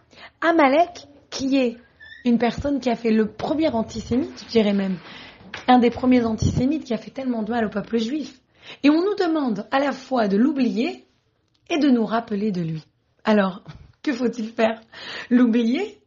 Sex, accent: female, French